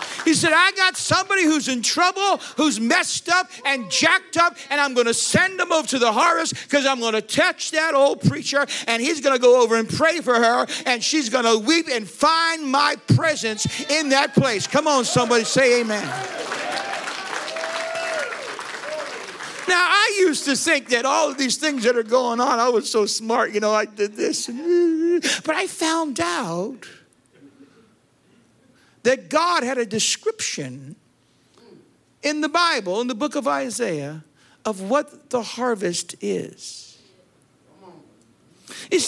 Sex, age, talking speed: male, 50-69, 160 wpm